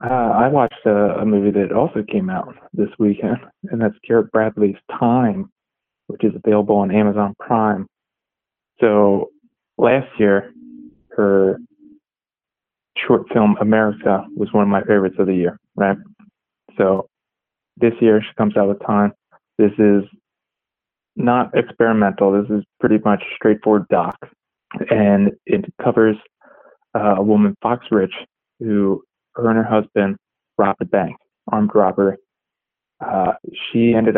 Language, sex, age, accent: English, male, 20-39, American